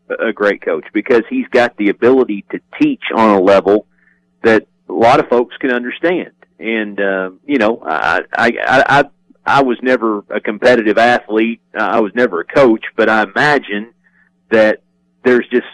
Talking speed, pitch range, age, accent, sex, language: 170 wpm, 100-125 Hz, 40-59, American, male, English